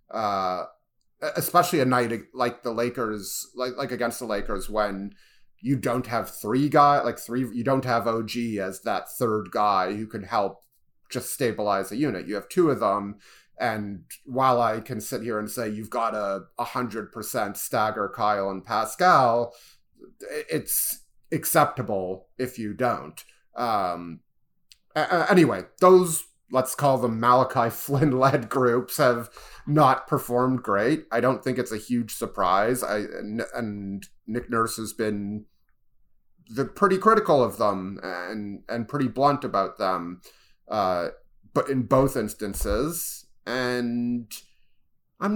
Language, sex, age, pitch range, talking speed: English, male, 30-49, 110-145 Hz, 140 wpm